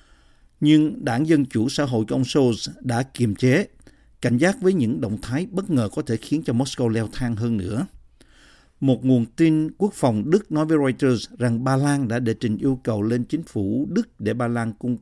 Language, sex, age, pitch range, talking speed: Vietnamese, male, 50-69, 115-145 Hz, 215 wpm